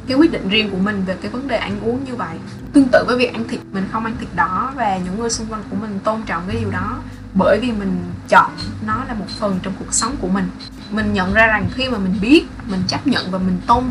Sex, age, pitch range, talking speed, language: female, 10-29, 180-240 Hz, 270 wpm, Vietnamese